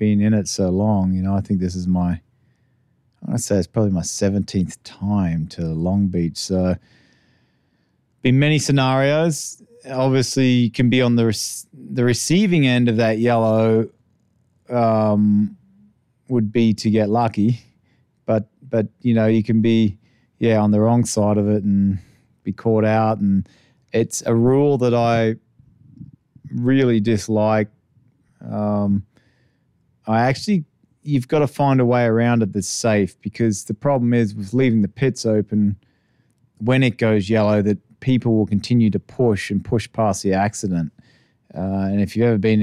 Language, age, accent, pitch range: English, 30-49, Australian, 100-120 Hz